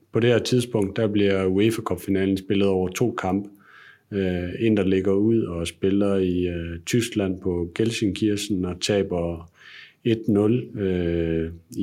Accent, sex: native, male